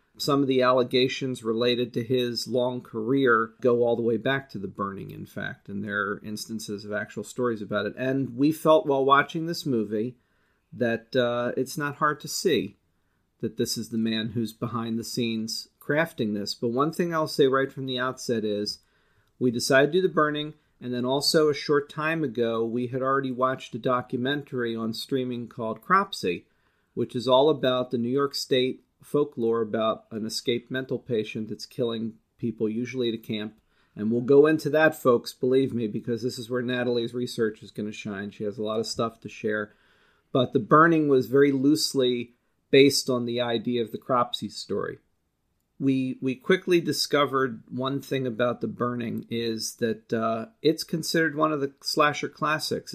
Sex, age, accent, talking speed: male, 40-59, American, 190 wpm